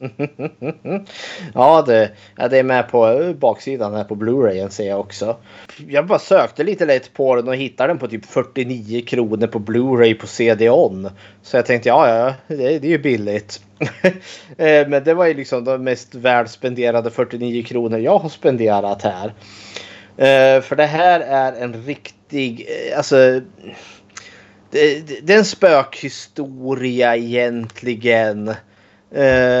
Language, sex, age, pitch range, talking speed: Swedish, male, 20-39, 115-145 Hz, 135 wpm